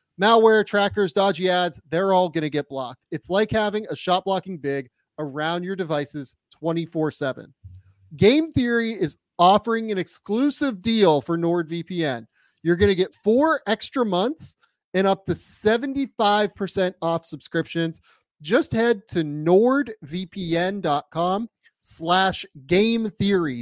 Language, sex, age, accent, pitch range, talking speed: English, male, 30-49, American, 145-200 Hz, 125 wpm